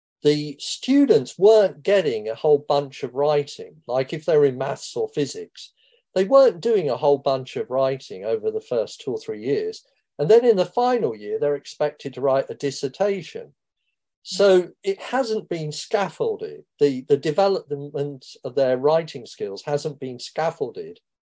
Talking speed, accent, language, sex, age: 165 wpm, British, English, male, 50-69